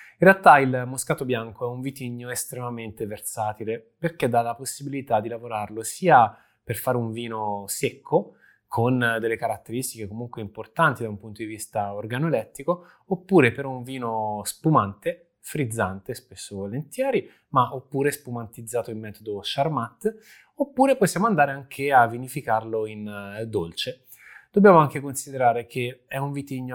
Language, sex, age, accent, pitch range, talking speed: Italian, male, 20-39, native, 110-145 Hz, 140 wpm